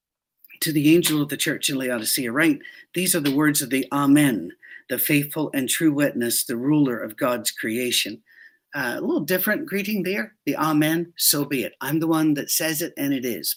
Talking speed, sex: 205 wpm, male